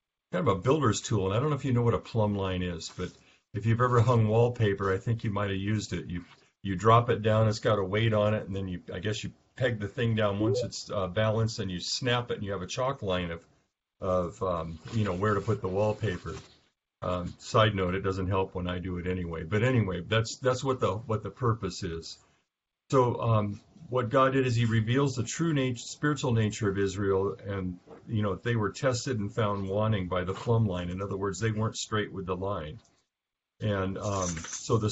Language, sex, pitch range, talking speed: English, male, 95-120 Hz, 235 wpm